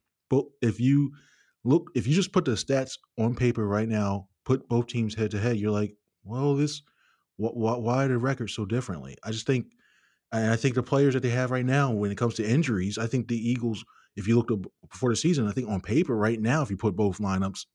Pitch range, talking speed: 100-120 Hz, 235 wpm